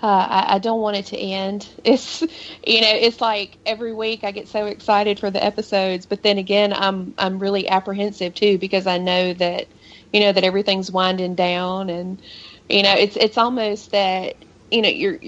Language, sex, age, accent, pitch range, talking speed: English, female, 30-49, American, 180-200 Hz, 195 wpm